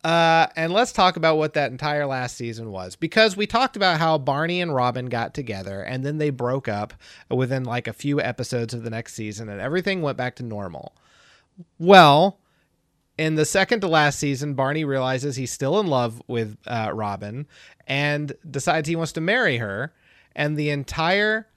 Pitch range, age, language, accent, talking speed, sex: 120-160 Hz, 30-49, English, American, 185 wpm, male